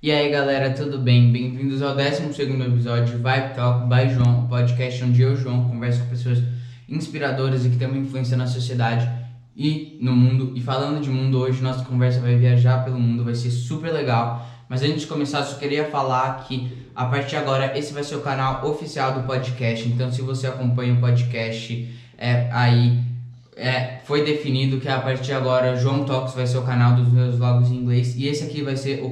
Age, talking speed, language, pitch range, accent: 10-29, 210 wpm, Portuguese, 125-140 Hz, Brazilian